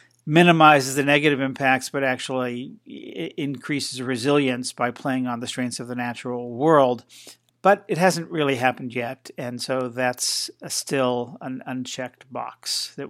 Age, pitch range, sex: 50-69, 125-155 Hz, male